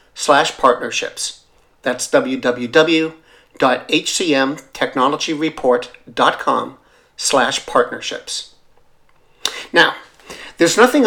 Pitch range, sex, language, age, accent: 135-165 Hz, male, English, 50-69, American